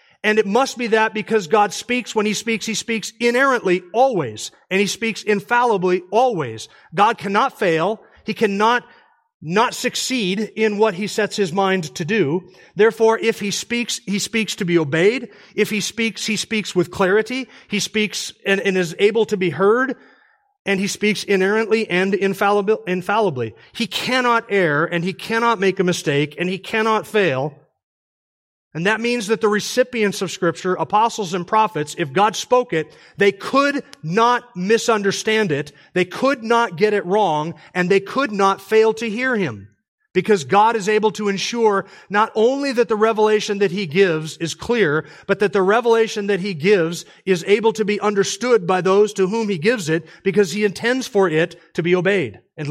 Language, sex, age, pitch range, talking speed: English, male, 40-59, 185-225 Hz, 180 wpm